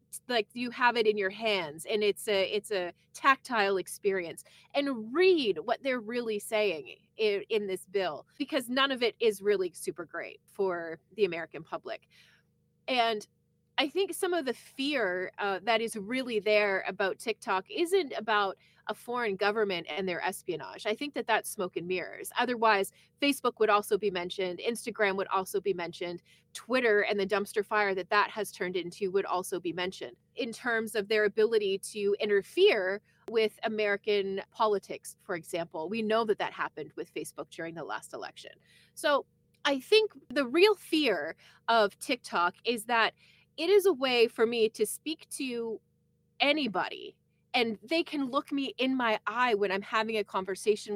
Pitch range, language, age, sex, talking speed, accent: 195-265 Hz, English, 30-49, female, 170 wpm, American